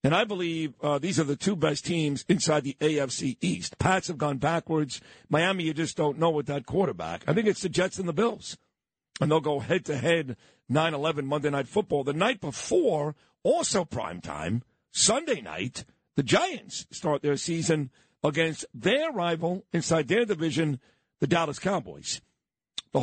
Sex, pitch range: male, 140-170 Hz